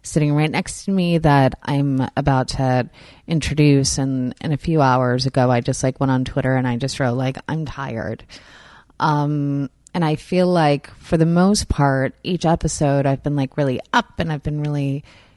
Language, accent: English, American